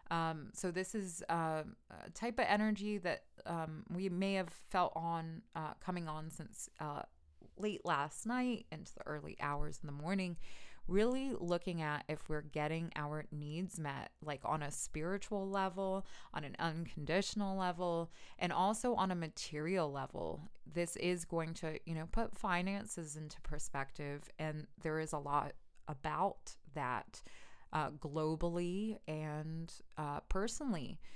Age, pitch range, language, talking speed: 20-39, 155-185 Hz, English, 150 wpm